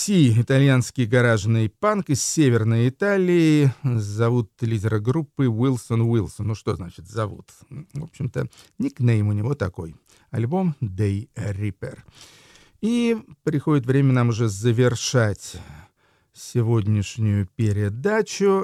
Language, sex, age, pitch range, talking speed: Russian, male, 40-59, 110-155 Hz, 105 wpm